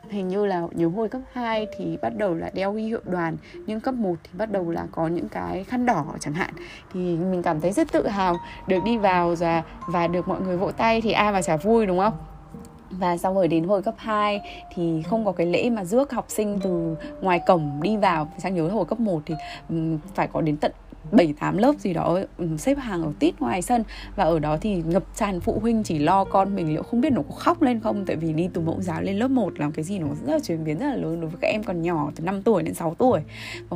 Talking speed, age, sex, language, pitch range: 260 wpm, 20-39, female, Vietnamese, 165-215 Hz